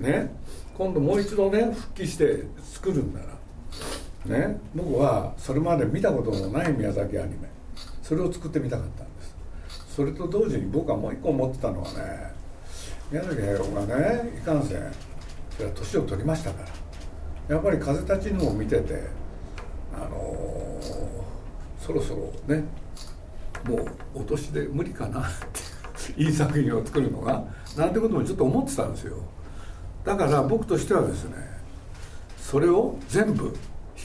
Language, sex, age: Japanese, male, 60-79